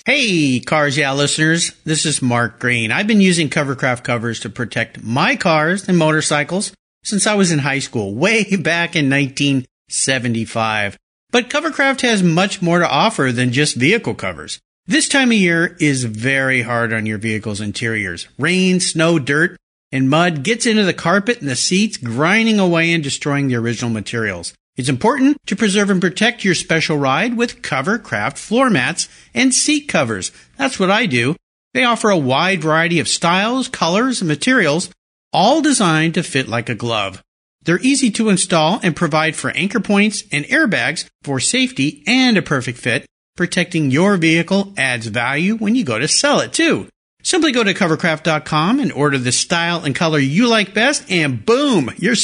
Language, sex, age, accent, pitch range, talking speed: English, male, 50-69, American, 135-210 Hz, 175 wpm